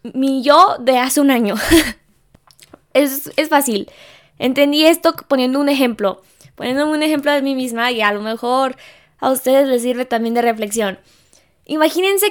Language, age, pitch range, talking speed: Spanish, 10-29, 230-285 Hz, 155 wpm